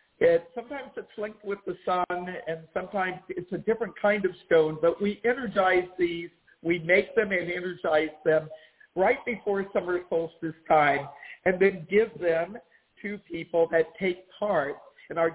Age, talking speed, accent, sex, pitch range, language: 50-69, 155 wpm, American, male, 170-210 Hz, English